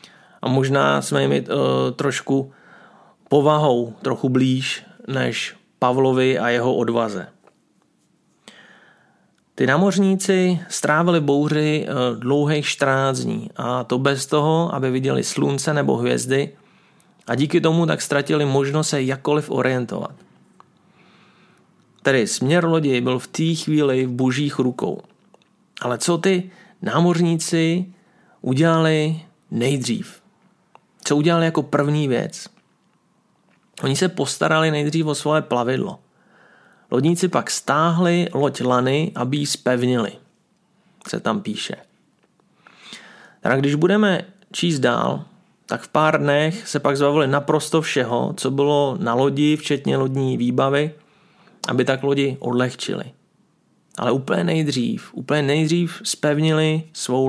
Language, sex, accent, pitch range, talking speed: Czech, male, native, 130-165 Hz, 115 wpm